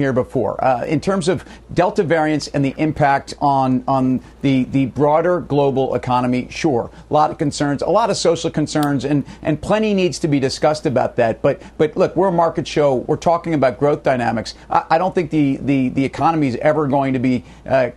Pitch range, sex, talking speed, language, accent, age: 135-160 Hz, male, 205 wpm, English, American, 40-59